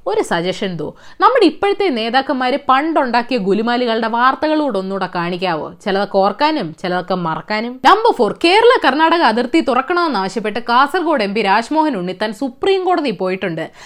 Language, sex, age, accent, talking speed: Malayalam, female, 20-39, native, 125 wpm